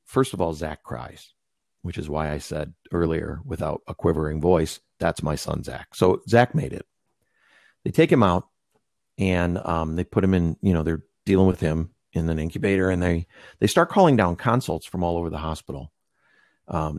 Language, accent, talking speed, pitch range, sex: English, American, 195 wpm, 80-105 Hz, male